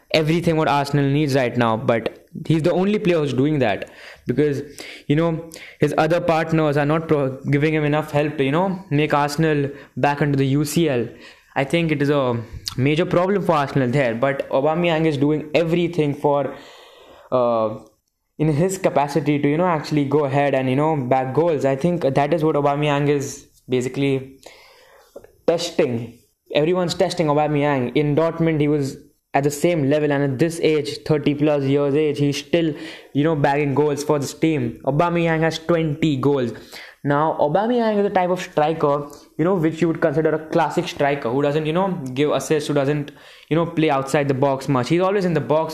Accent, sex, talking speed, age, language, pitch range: Indian, male, 190 wpm, 20-39, English, 140-170 Hz